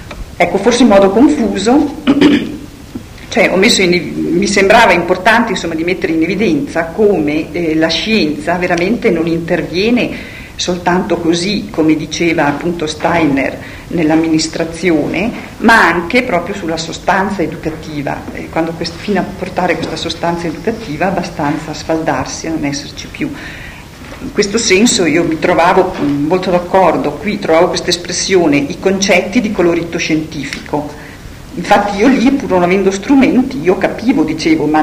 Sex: female